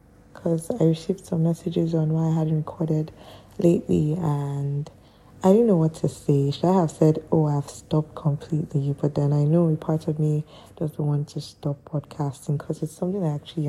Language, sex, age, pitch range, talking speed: English, female, 20-39, 145-170 Hz, 190 wpm